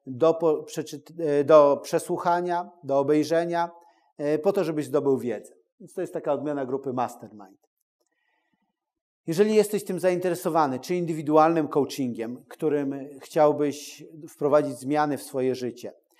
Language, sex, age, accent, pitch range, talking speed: Polish, male, 40-59, native, 140-170 Hz, 120 wpm